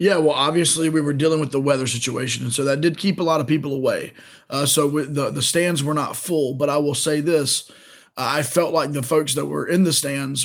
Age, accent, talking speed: 20-39, American, 245 wpm